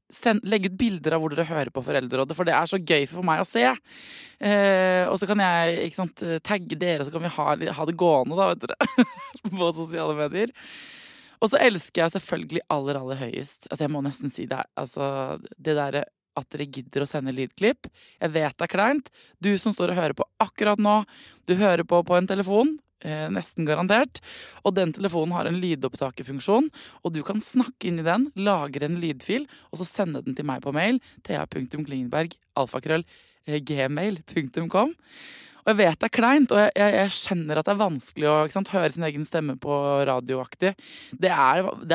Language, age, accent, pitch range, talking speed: English, 20-39, Swedish, 150-205 Hz, 195 wpm